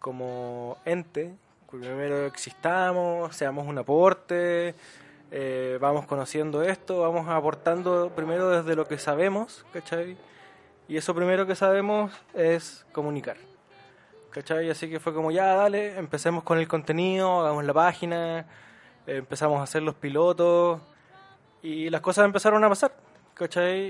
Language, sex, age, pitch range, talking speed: Spanish, male, 20-39, 155-180 Hz, 135 wpm